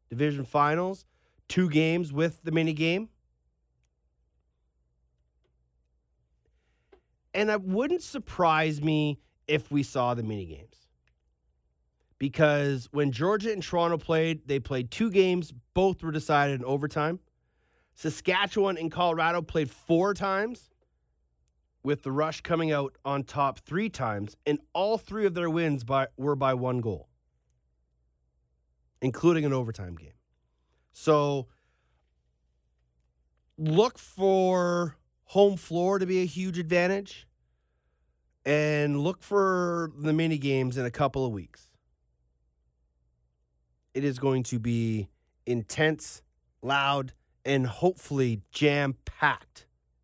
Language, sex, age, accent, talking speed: English, male, 30-49, American, 110 wpm